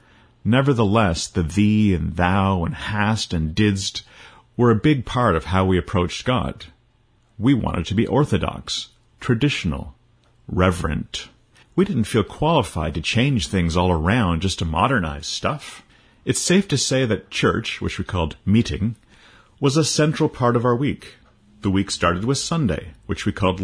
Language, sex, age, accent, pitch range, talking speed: English, male, 40-59, American, 90-125 Hz, 160 wpm